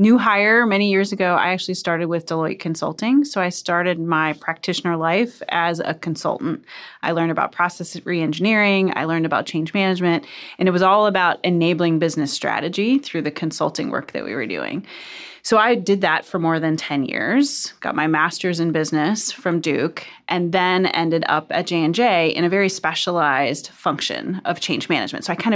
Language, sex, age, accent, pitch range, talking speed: English, female, 30-49, American, 160-190 Hz, 185 wpm